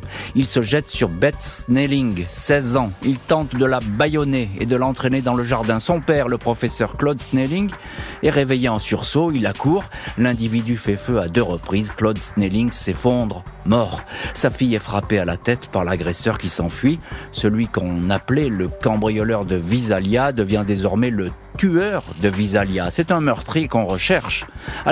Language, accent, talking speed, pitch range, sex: French, French, 175 wpm, 105-145 Hz, male